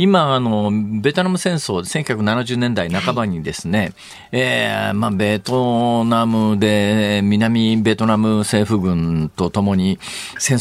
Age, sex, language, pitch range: 40-59, male, Japanese, 100-150 Hz